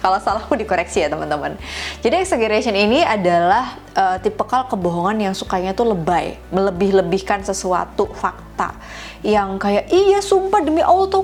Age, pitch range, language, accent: 20-39, 180-245 Hz, Indonesian, native